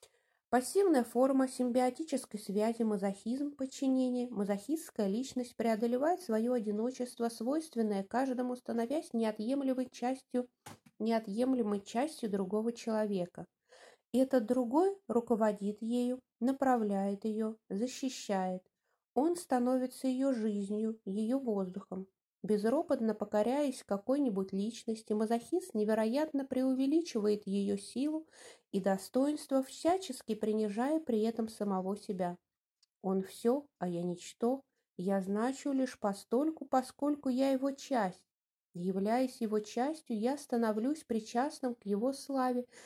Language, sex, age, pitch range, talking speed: English, female, 20-39, 210-265 Hz, 100 wpm